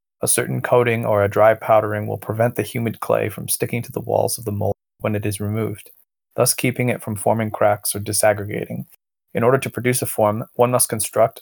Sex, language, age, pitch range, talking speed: male, English, 20-39, 105-115 Hz, 215 wpm